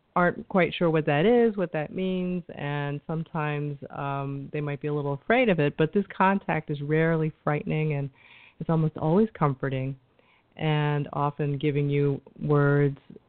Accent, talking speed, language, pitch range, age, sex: American, 165 wpm, English, 145-185 Hz, 40-59, female